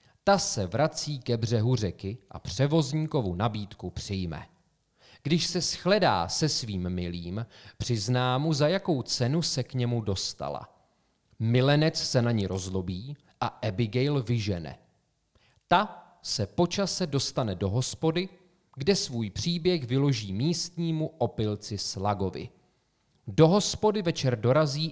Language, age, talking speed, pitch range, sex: Czech, 40-59, 120 wpm, 105-140 Hz, male